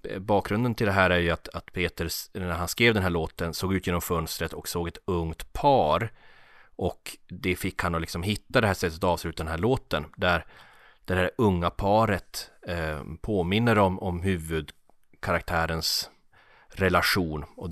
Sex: male